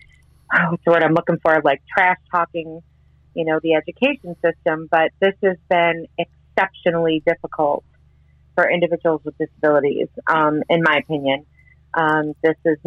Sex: female